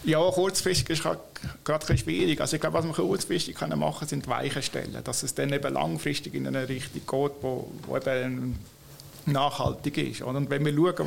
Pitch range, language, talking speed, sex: 130-150 Hz, German, 190 wpm, male